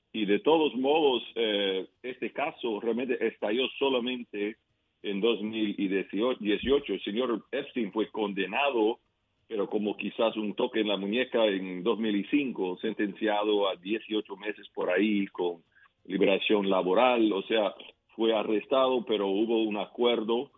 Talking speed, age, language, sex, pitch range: 130 wpm, 50-69, Spanish, male, 95-110 Hz